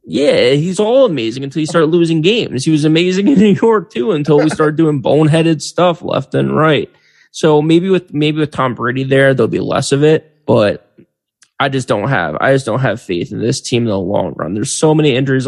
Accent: American